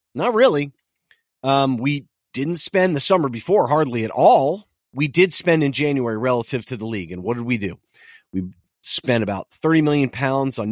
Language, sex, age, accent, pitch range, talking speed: English, male, 30-49, American, 110-145 Hz, 185 wpm